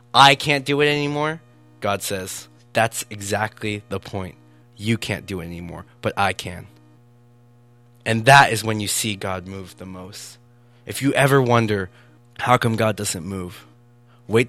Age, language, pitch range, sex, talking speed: 20-39, English, 95-120 Hz, male, 160 wpm